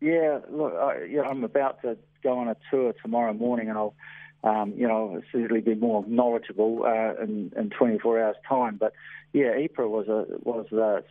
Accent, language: Australian, English